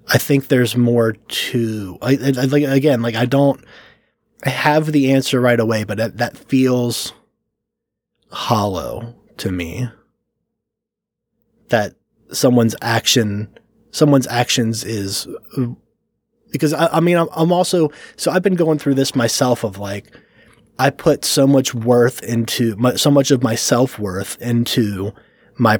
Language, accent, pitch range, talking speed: English, American, 115-140 Hz, 150 wpm